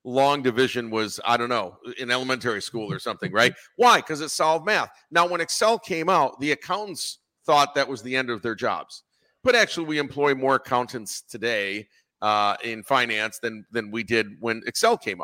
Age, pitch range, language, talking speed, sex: 50-69, 120-155 Hz, English, 195 wpm, male